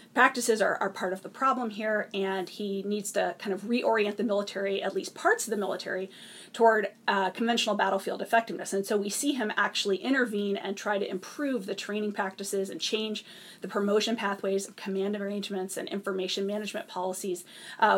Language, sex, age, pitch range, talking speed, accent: English, female, 30-49, 195-225 Hz, 180 wpm, American